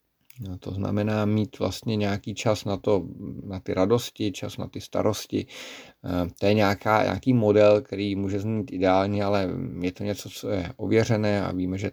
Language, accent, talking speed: Czech, native, 175 wpm